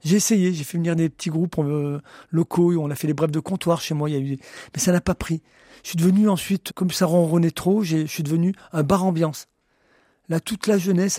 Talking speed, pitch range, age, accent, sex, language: 220 wpm, 150-175 Hz, 40-59, French, male, French